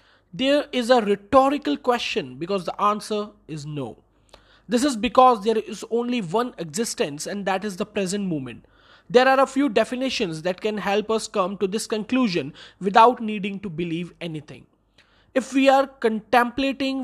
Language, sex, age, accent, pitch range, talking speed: Hindi, male, 20-39, native, 190-245 Hz, 160 wpm